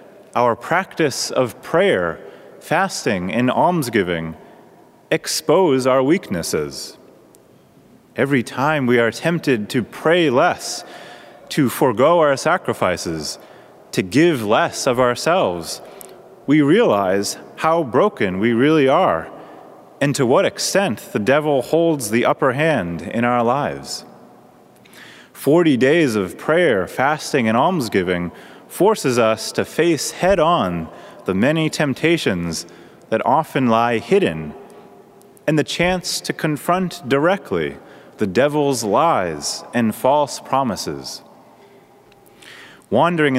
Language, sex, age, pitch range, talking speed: English, male, 30-49, 120-170 Hz, 110 wpm